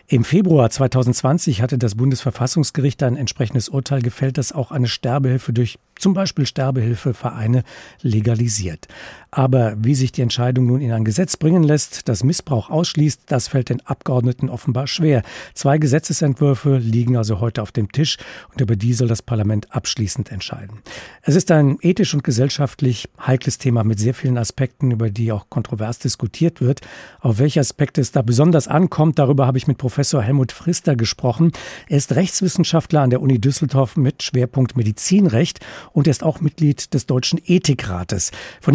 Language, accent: German, German